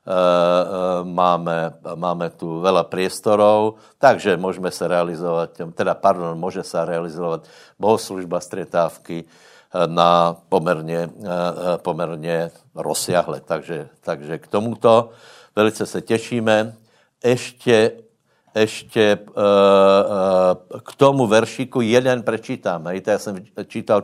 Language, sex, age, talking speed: Slovak, male, 60-79, 100 wpm